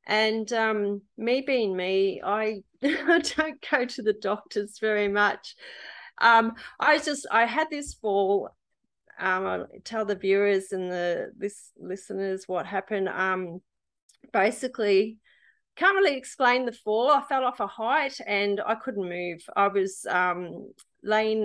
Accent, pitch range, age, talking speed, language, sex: Australian, 190-235 Hz, 30-49, 150 wpm, English, female